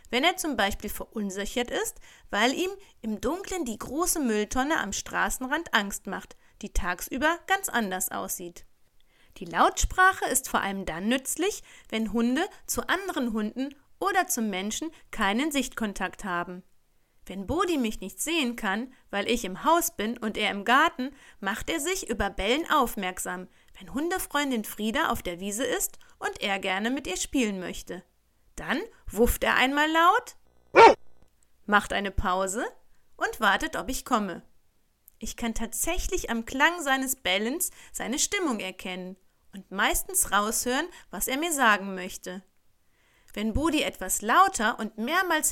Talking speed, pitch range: 150 wpm, 200-315 Hz